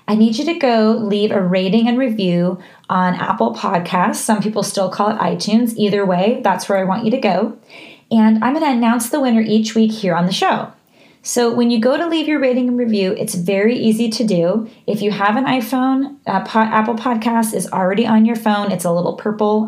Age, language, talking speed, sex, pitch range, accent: 20-39, English, 225 wpm, female, 195-245 Hz, American